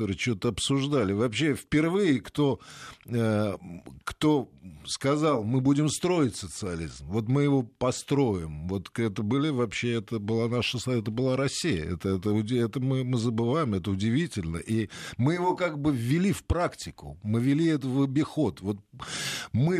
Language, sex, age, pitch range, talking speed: Russian, male, 50-69, 110-150 Hz, 150 wpm